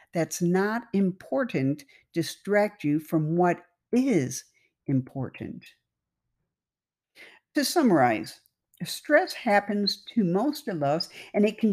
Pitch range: 155-210 Hz